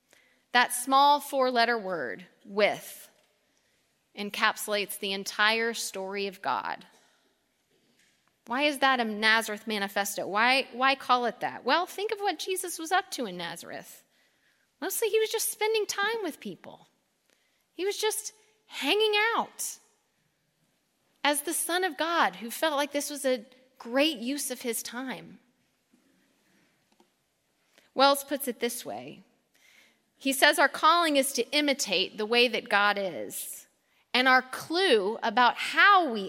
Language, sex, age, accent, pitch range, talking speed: English, female, 30-49, American, 205-290 Hz, 140 wpm